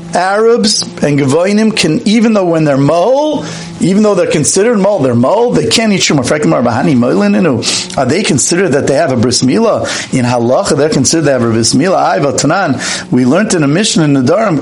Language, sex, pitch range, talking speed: English, male, 130-190 Hz, 195 wpm